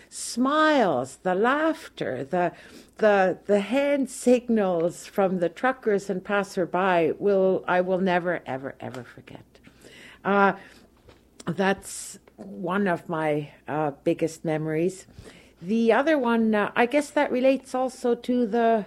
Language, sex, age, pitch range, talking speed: English, female, 60-79, 175-230 Hz, 125 wpm